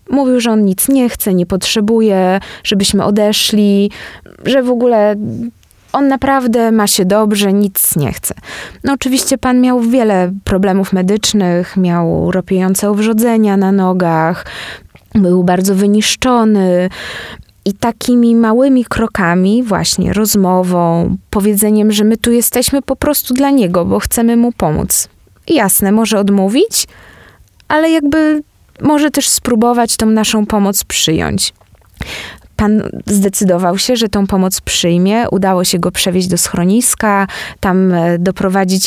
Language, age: Polish, 20-39